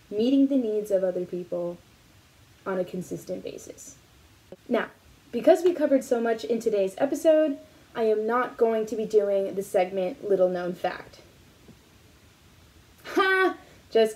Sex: female